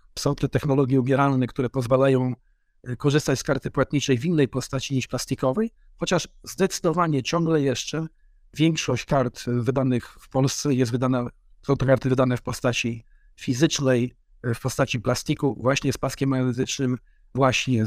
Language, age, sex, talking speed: Polish, 50-69, male, 140 wpm